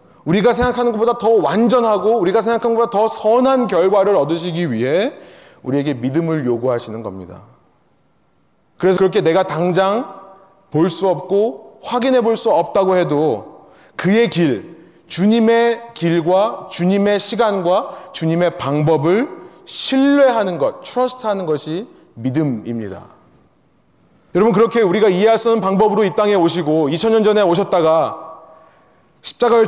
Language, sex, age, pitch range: Korean, male, 30-49, 165-225 Hz